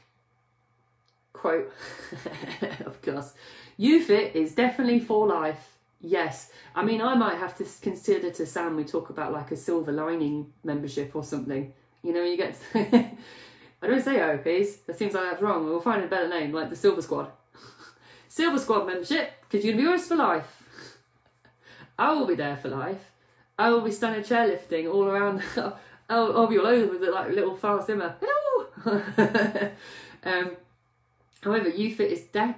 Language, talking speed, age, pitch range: English, 170 wpm, 30-49, 150-220 Hz